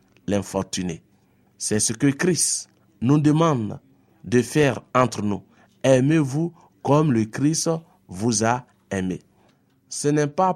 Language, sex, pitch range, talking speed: French, male, 115-155 Hz, 120 wpm